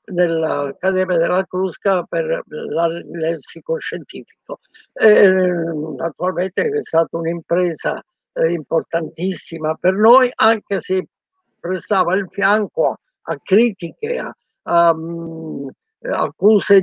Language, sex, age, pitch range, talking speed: Italian, male, 60-79, 175-220 Hz, 90 wpm